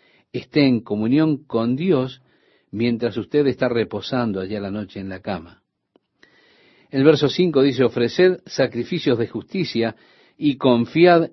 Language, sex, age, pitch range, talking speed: Spanish, male, 50-69, 105-135 Hz, 130 wpm